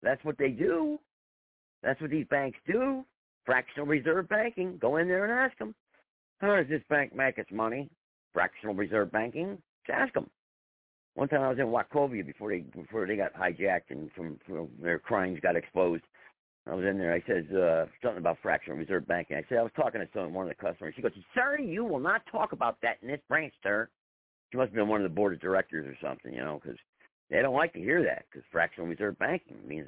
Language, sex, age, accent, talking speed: English, male, 50-69, American, 225 wpm